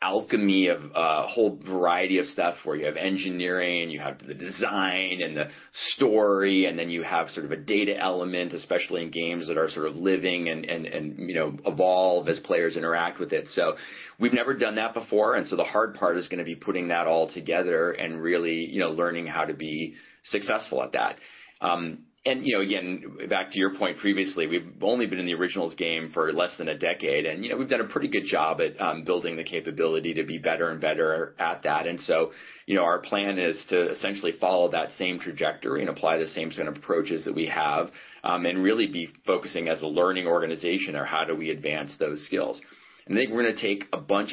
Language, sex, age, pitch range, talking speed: English, male, 30-49, 80-95 Hz, 225 wpm